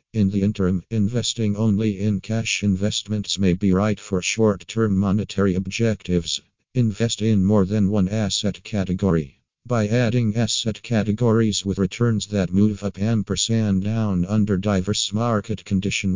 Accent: American